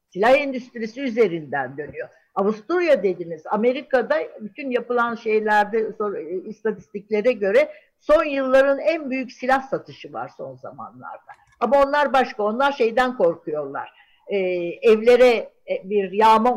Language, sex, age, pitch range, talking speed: Turkish, female, 60-79, 185-265 Hz, 110 wpm